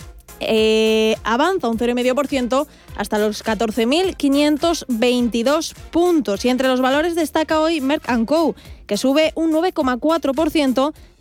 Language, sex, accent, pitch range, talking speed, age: Spanish, female, Spanish, 240-300 Hz, 105 wpm, 20-39